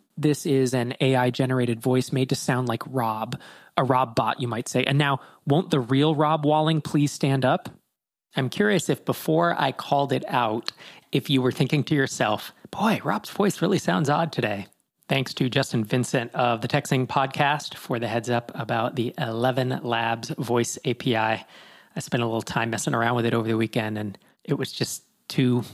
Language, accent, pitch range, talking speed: English, American, 120-145 Hz, 190 wpm